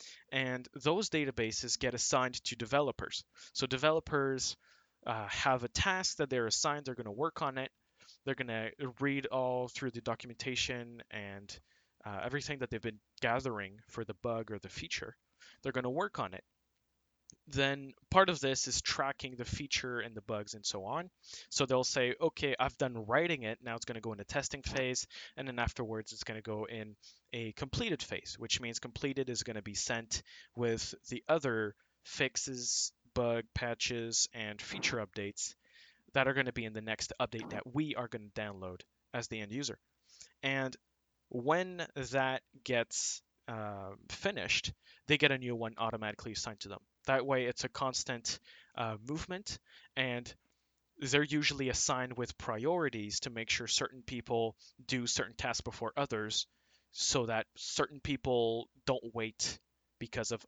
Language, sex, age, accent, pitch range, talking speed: English, male, 20-39, American, 110-135 Hz, 170 wpm